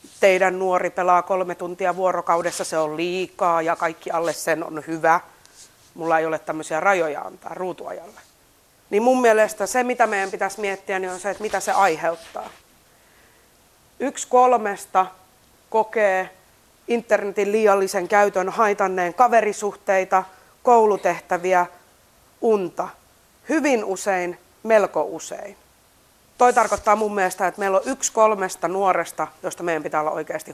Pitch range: 170-205 Hz